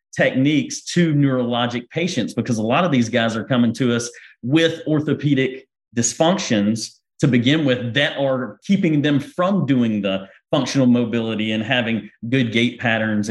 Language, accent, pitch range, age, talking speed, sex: English, American, 115-145 Hz, 40-59, 155 wpm, male